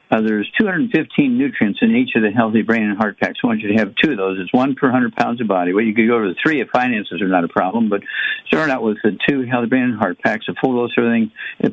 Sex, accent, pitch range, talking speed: male, American, 110-140 Hz, 310 wpm